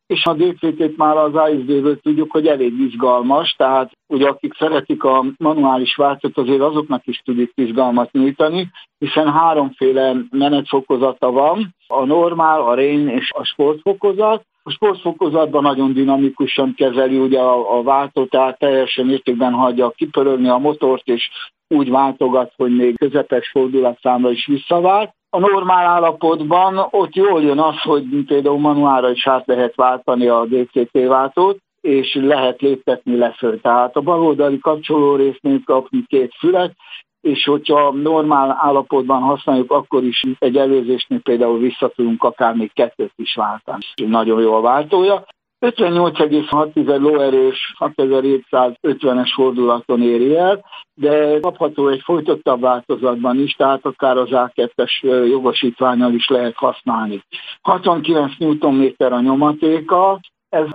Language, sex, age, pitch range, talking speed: Hungarian, male, 60-79, 130-155 Hz, 130 wpm